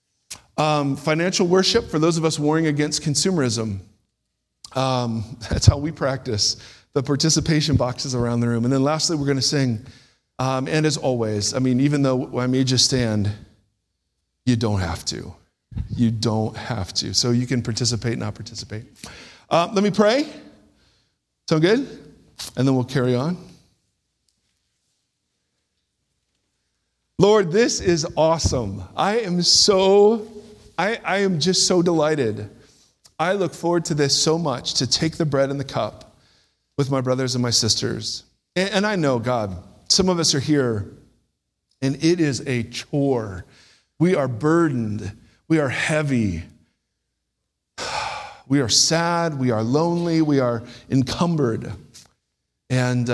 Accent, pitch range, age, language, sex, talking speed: American, 115-155 Hz, 50-69, English, male, 145 wpm